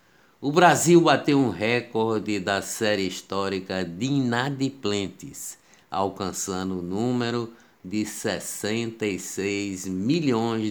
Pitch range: 95-115 Hz